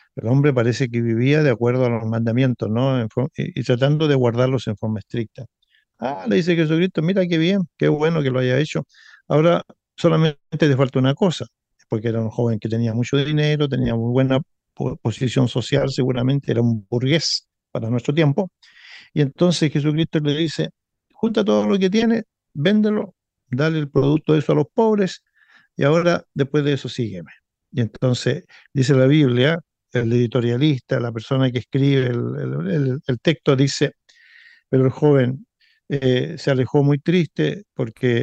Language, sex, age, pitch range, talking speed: Spanish, male, 50-69, 125-160 Hz, 170 wpm